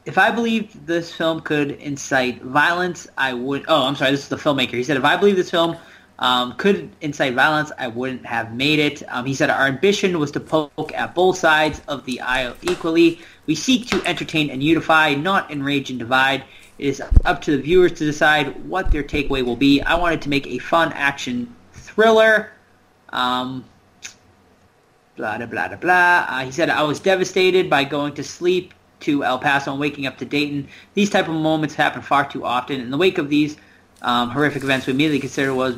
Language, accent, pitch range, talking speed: English, American, 125-160 Hz, 205 wpm